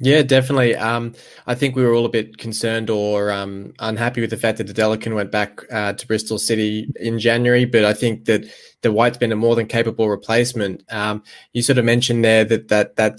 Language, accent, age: English, Australian, 20-39